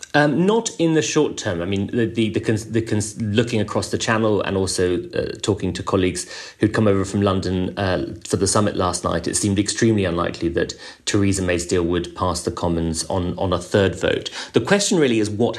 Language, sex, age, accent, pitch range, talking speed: English, male, 30-49, British, 95-115 Hz, 220 wpm